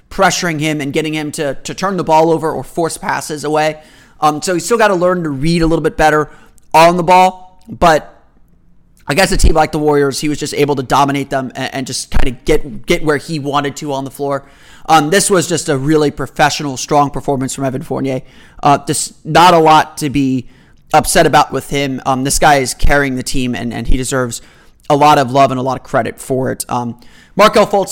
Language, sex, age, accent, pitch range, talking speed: English, male, 30-49, American, 135-165 Hz, 230 wpm